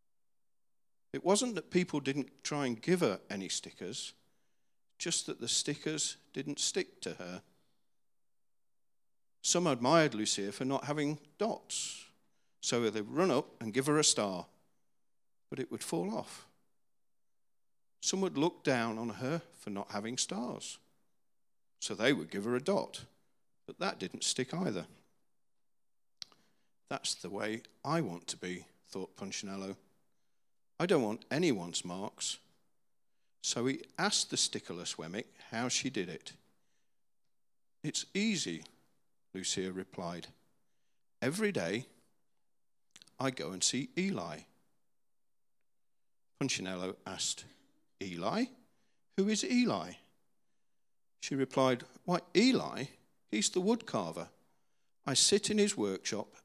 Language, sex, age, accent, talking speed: English, male, 50-69, British, 125 wpm